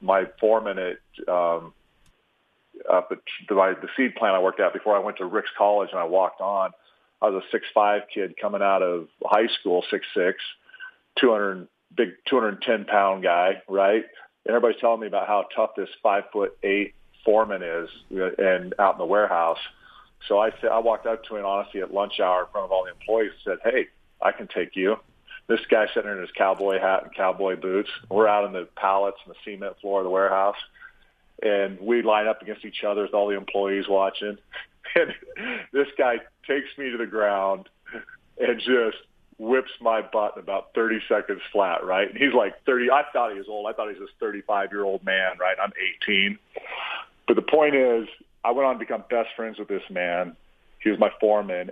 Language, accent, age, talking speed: English, American, 40-59, 200 wpm